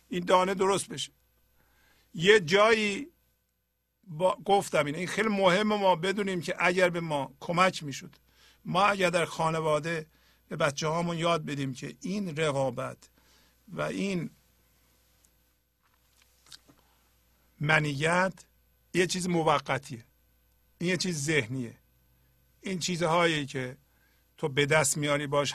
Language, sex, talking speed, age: Persian, male, 115 wpm, 50-69